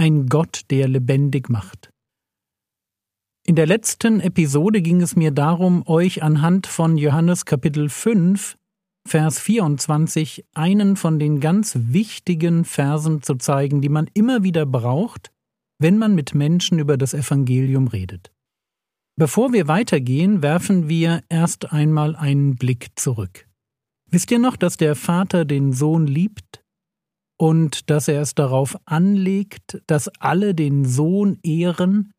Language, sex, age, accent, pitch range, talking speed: German, male, 50-69, German, 140-185 Hz, 135 wpm